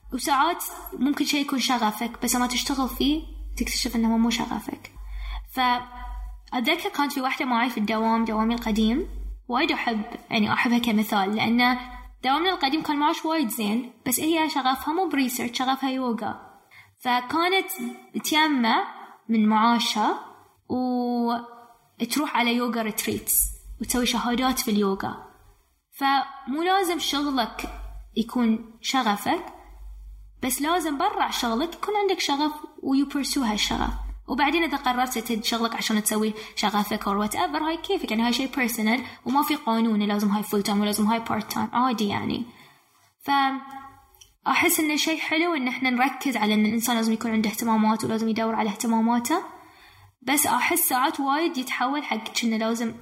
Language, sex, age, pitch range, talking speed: Arabic, female, 10-29, 225-280 Hz, 140 wpm